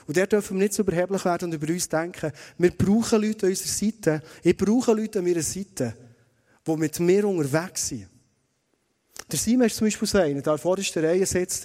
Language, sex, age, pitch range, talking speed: German, male, 30-49, 160-210 Hz, 210 wpm